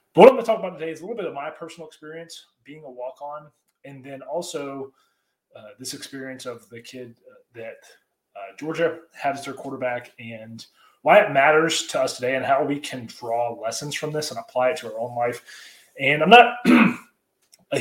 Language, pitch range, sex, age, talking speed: English, 125-160 Hz, male, 30-49, 205 wpm